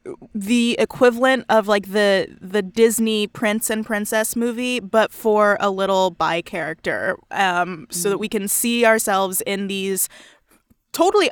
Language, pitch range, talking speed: English, 190-225 Hz, 145 wpm